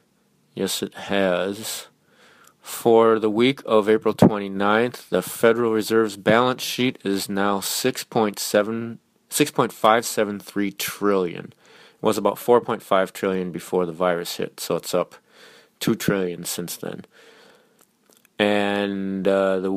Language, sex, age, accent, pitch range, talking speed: English, male, 30-49, American, 100-125 Hz, 115 wpm